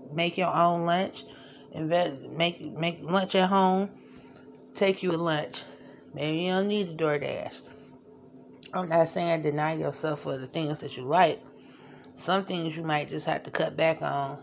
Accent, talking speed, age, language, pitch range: American, 170 wpm, 30-49, English, 140-175 Hz